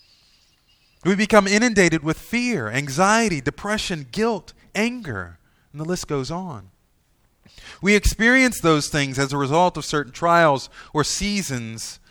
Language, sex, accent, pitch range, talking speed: English, male, American, 100-145 Hz, 130 wpm